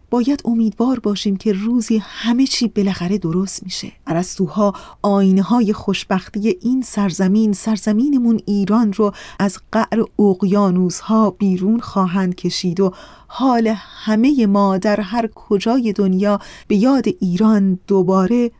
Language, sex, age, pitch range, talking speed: Persian, female, 30-49, 185-225 Hz, 120 wpm